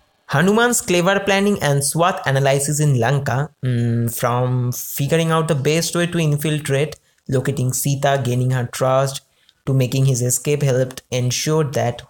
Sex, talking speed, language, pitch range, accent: male, 145 wpm, Bengali, 130-180 Hz, native